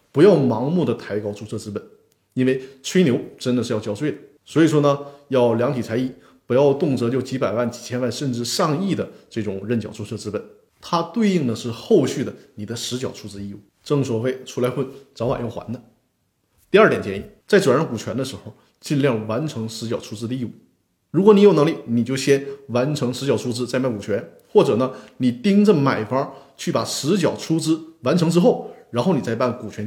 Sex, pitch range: male, 115-145 Hz